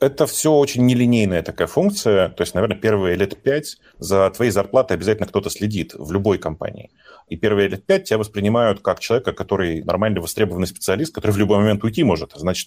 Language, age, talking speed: Russian, 30-49, 190 wpm